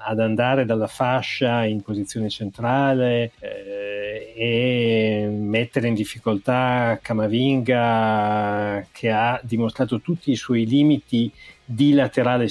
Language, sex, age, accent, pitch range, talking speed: Italian, male, 30-49, native, 110-135 Hz, 105 wpm